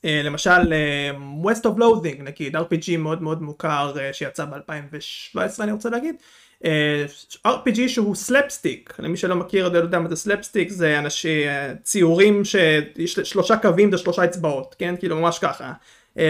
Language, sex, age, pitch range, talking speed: Hebrew, male, 30-49, 150-195 Hz, 160 wpm